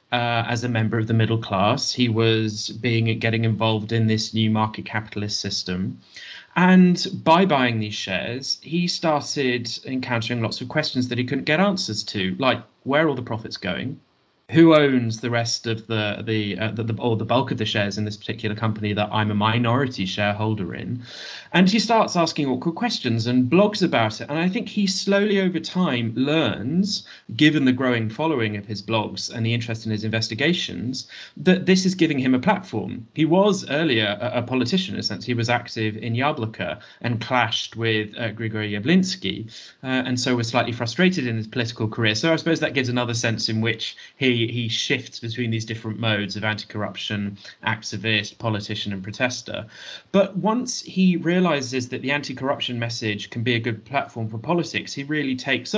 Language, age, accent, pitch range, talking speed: English, 30-49, British, 110-145 Hz, 190 wpm